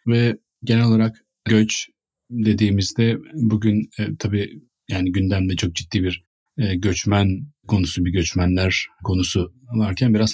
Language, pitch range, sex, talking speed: Turkish, 95-115 Hz, male, 120 wpm